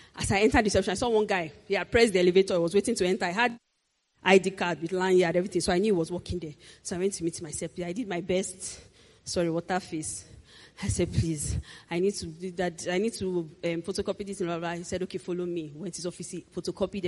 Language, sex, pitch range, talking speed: English, female, 175-225 Hz, 265 wpm